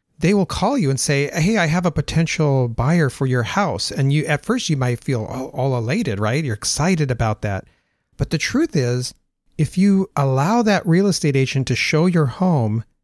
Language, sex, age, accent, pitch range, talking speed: English, male, 40-59, American, 120-155 Hz, 205 wpm